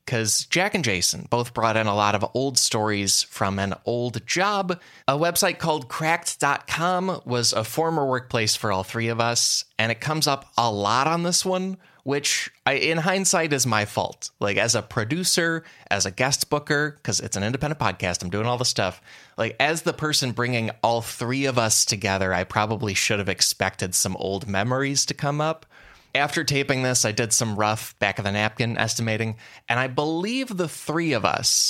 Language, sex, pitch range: English, male, 100-140 Hz